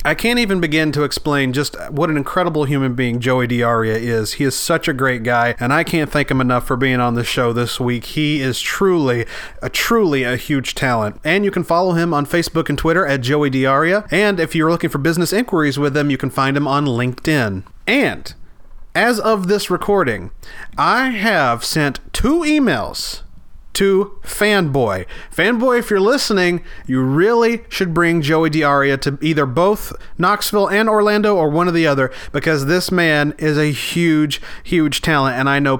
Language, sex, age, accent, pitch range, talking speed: English, male, 30-49, American, 135-180 Hz, 190 wpm